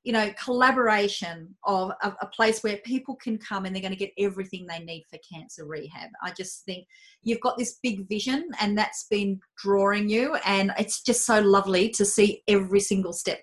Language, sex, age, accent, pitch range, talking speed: English, female, 30-49, Australian, 205-270 Hz, 195 wpm